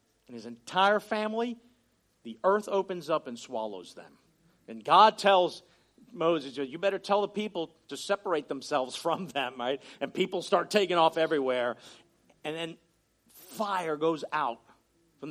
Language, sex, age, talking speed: English, male, 50-69, 150 wpm